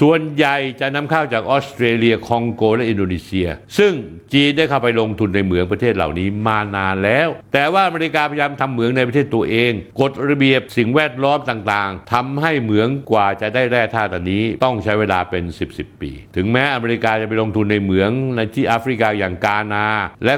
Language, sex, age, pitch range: Thai, male, 60-79, 105-135 Hz